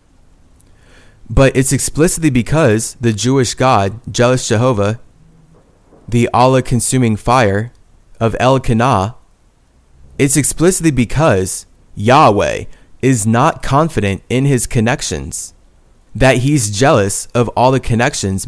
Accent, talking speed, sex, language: American, 105 wpm, male, English